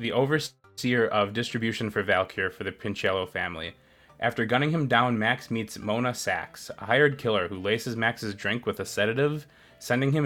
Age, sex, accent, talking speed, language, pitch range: 20-39, male, American, 175 wpm, English, 110-135 Hz